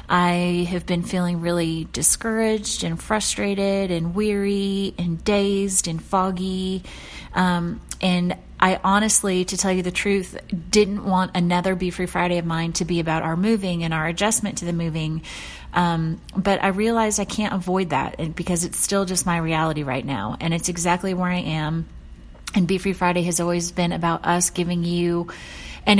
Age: 30-49